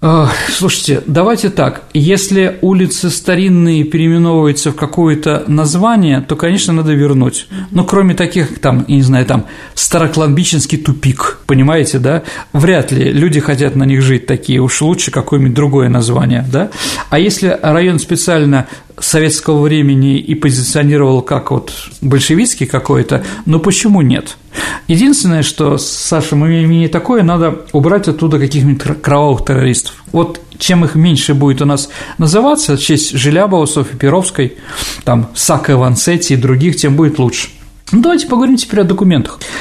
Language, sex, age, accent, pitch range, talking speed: Russian, male, 40-59, native, 140-180 Hz, 140 wpm